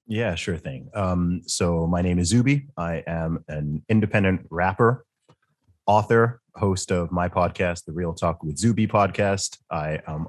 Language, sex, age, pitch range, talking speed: English, male, 30-49, 85-100 Hz, 155 wpm